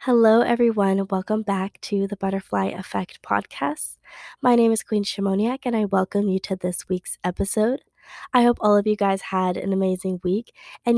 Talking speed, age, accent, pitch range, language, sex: 180 wpm, 20-39, American, 190-220 Hz, English, female